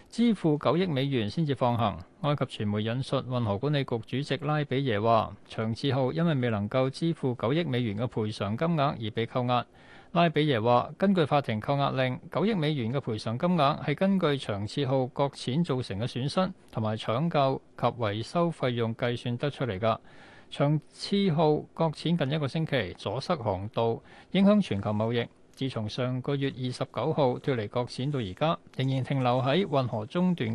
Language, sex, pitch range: Chinese, male, 120-155 Hz